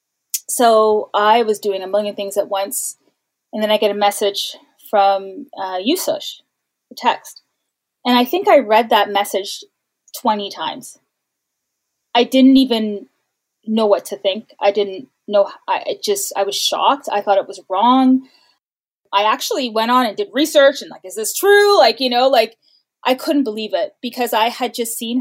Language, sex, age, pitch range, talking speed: English, female, 20-39, 205-260 Hz, 175 wpm